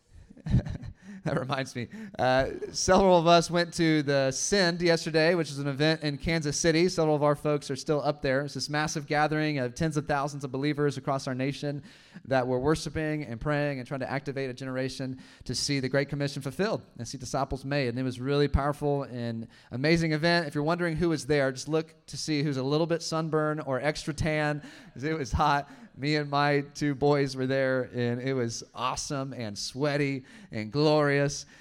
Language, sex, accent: English, male, American